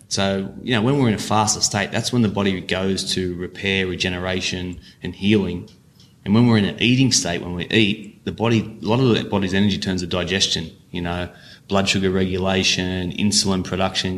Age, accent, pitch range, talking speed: 20-39, Australian, 90-105 Hz, 200 wpm